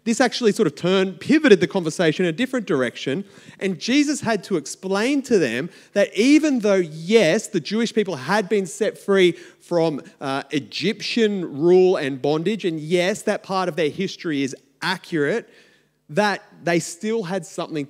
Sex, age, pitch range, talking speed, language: male, 30-49, 145-200 Hz, 170 wpm, English